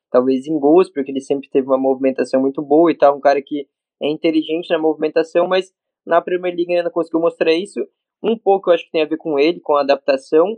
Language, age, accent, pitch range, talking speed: Portuguese, 20-39, Brazilian, 145-175 Hz, 235 wpm